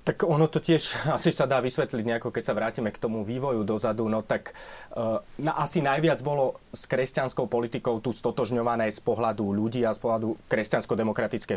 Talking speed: 175 wpm